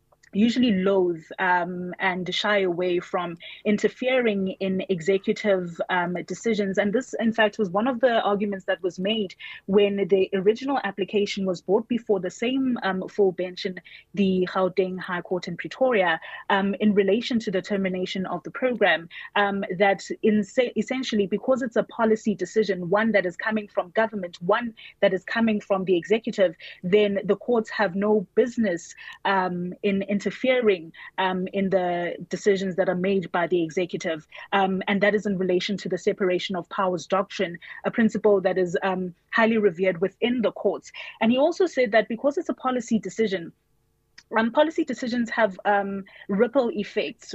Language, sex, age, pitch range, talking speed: English, female, 20-39, 190-220 Hz, 170 wpm